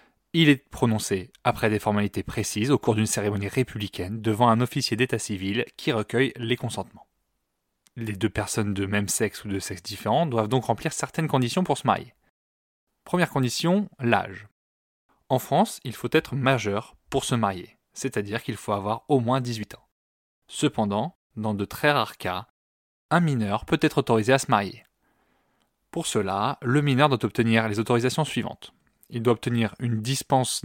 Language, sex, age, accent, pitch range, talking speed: French, male, 20-39, French, 105-130 Hz, 170 wpm